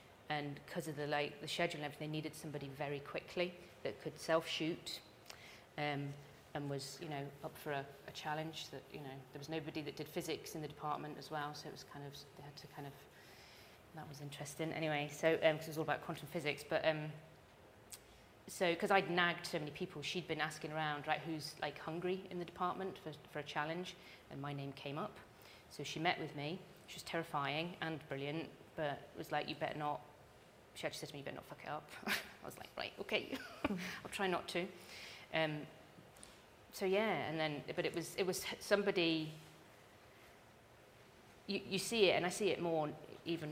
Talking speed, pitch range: 210 wpm, 145-170 Hz